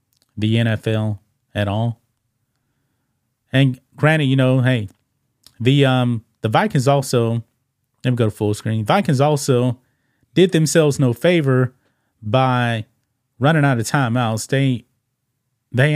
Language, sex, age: English, male, 30-49